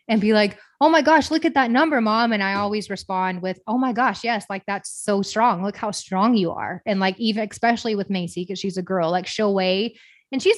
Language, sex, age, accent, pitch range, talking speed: English, female, 20-39, American, 190-220 Hz, 250 wpm